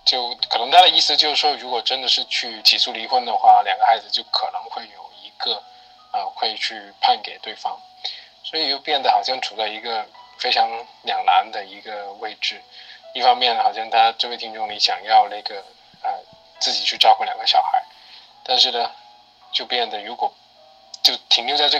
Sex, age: male, 20-39